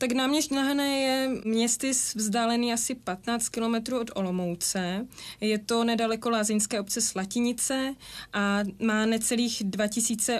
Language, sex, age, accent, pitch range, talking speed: Czech, female, 20-39, native, 200-225 Hz, 120 wpm